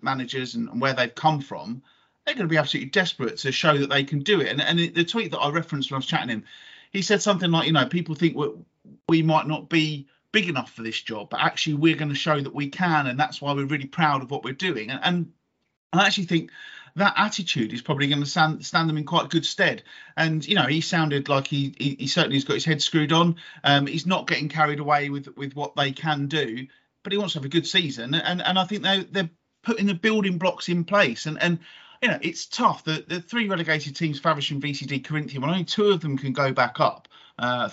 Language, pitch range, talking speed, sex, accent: English, 140-175 Hz, 255 wpm, male, British